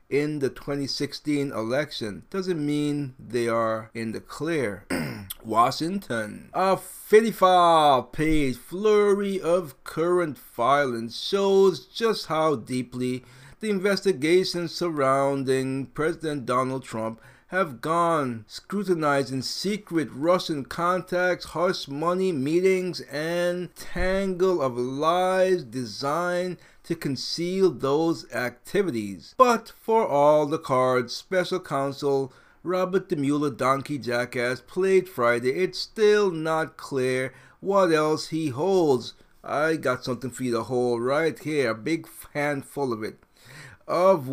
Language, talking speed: English, 115 wpm